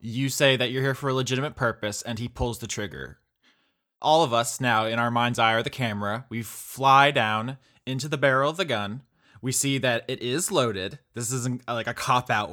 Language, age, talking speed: English, 20-39, 215 wpm